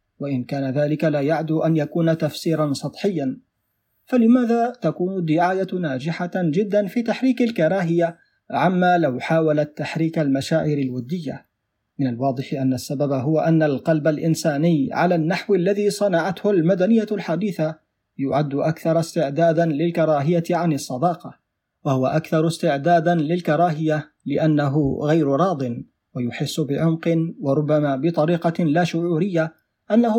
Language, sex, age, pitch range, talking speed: Arabic, male, 40-59, 150-180 Hz, 115 wpm